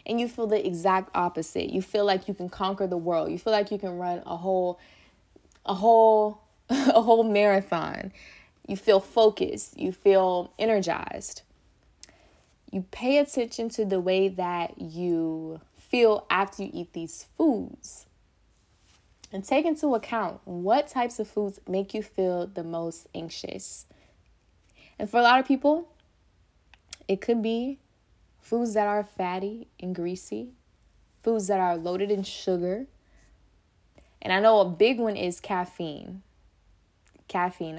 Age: 20-39